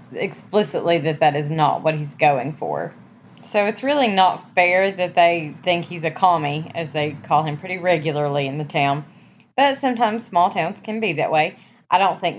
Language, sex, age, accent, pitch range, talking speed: English, female, 20-39, American, 170-225 Hz, 195 wpm